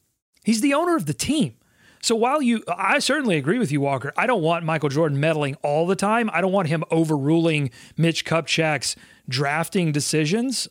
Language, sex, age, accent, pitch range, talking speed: English, male, 30-49, American, 150-215 Hz, 185 wpm